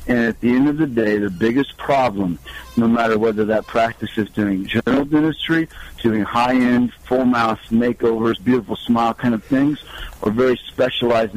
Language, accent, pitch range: English, American, 110-130 Hz